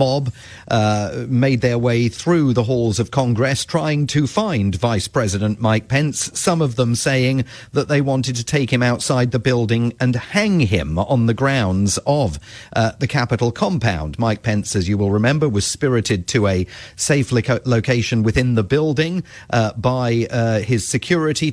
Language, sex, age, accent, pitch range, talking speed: English, male, 40-59, British, 110-140 Hz, 170 wpm